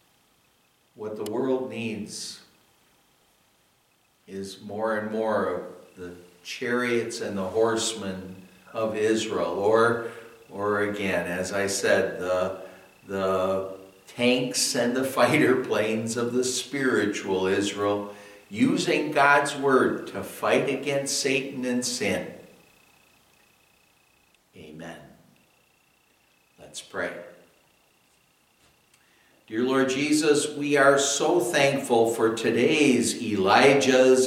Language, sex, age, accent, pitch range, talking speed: English, male, 60-79, American, 105-145 Hz, 95 wpm